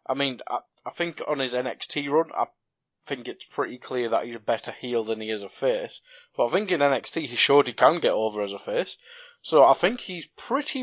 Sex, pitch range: male, 110-170 Hz